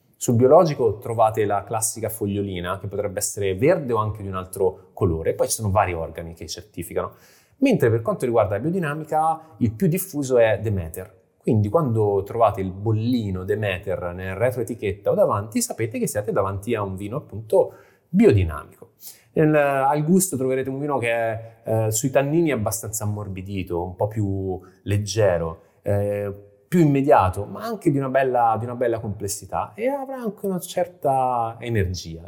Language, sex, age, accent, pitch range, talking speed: Italian, male, 20-39, native, 100-130 Hz, 155 wpm